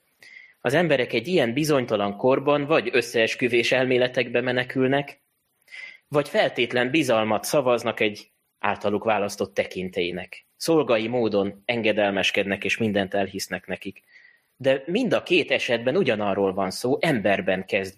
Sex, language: male, Hungarian